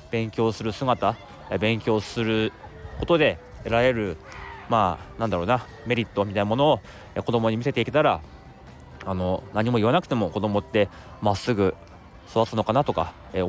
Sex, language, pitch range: male, Japanese, 95-120 Hz